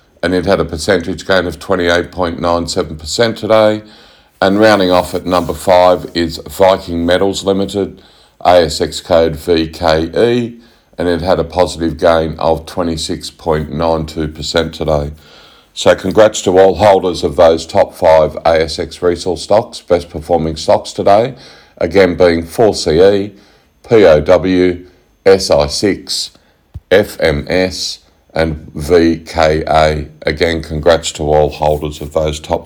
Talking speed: 115 wpm